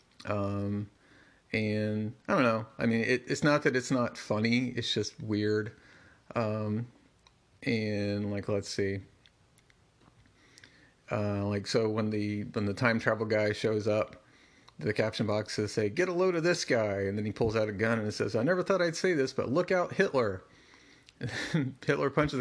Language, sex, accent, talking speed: English, male, American, 185 wpm